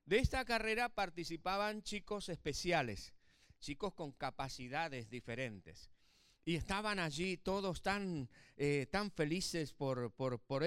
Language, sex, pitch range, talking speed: Spanish, male, 155-215 Hz, 120 wpm